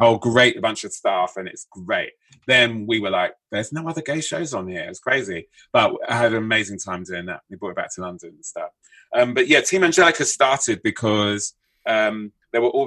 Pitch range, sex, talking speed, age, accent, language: 100-130 Hz, male, 225 wpm, 30-49, British, English